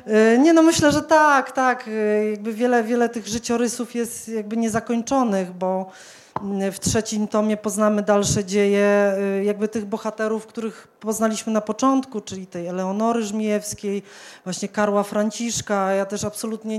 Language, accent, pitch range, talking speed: Polish, native, 200-230 Hz, 135 wpm